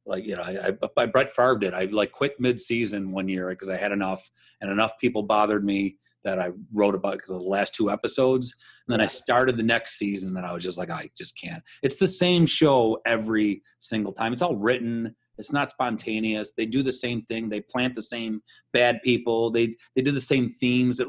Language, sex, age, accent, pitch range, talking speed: English, male, 30-49, American, 105-130 Hz, 230 wpm